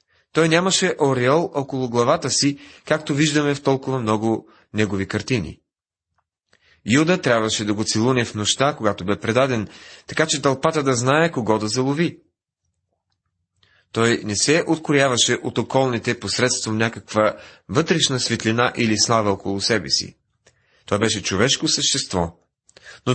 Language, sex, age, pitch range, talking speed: Bulgarian, male, 30-49, 100-140 Hz, 130 wpm